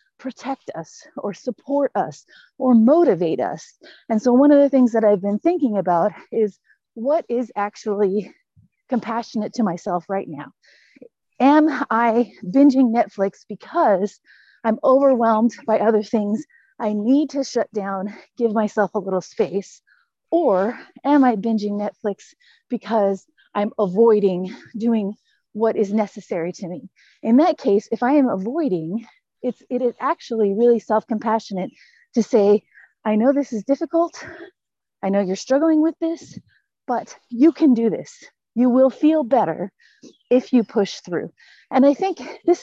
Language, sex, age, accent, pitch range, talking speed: English, female, 30-49, American, 210-285 Hz, 150 wpm